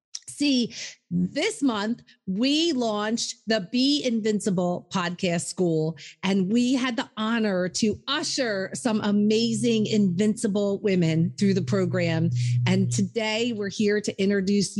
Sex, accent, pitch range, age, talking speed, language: female, American, 190-240 Hz, 40-59, 120 wpm, English